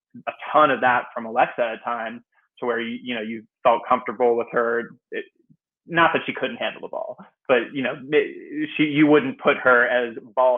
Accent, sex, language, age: American, male, English, 20-39